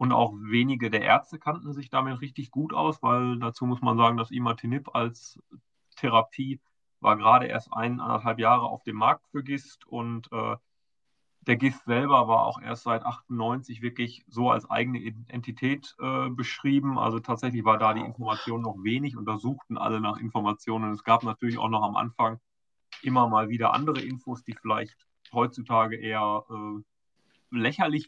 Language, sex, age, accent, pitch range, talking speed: German, male, 30-49, German, 110-125 Hz, 165 wpm